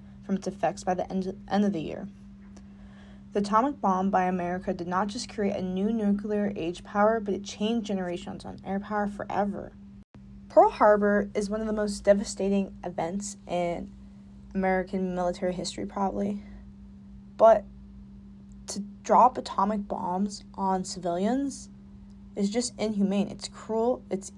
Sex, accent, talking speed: female, American, 145 wpm